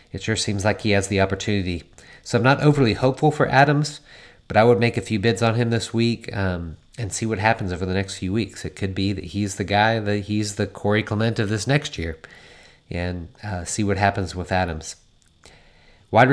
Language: English